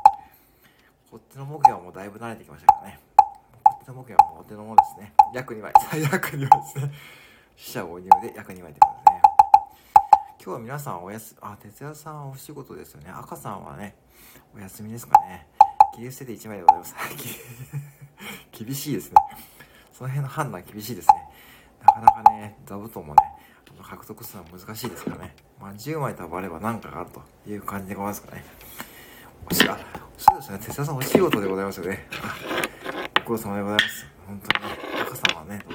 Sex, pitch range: male, 105-150 Hz